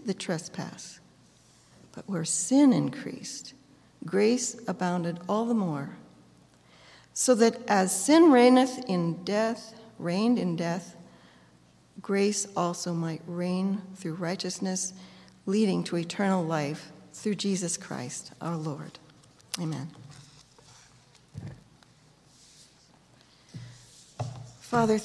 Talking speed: 90 wpm